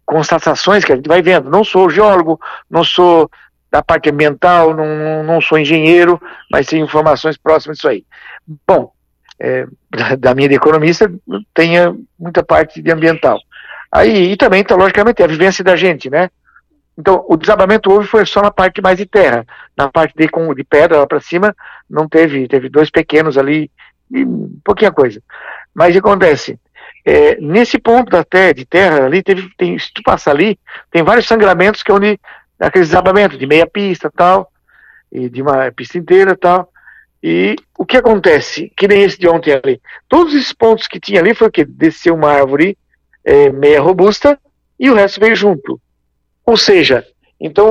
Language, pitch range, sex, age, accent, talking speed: Portuguese, 155-205 Hz, male, 60-79, Brazilian, 175 wpm